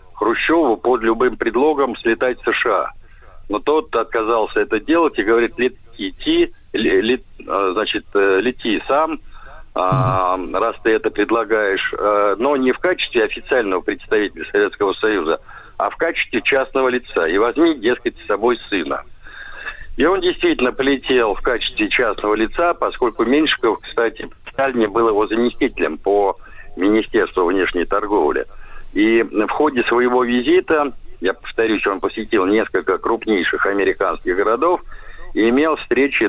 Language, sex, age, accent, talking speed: Russian, male, 60-79, native, 130 wpm